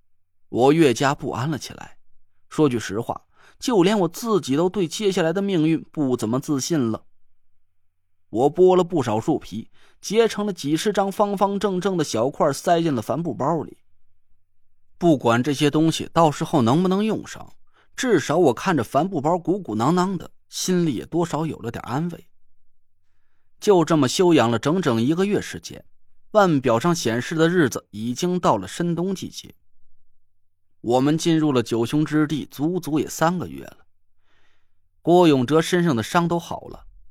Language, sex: Chinese, male